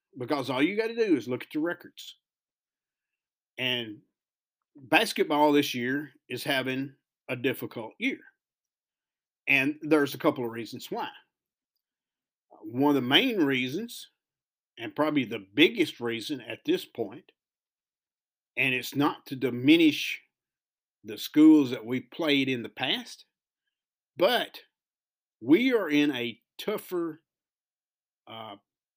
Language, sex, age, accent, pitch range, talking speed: English, male, 50-69, American, 125-205 Hz, 125 wpm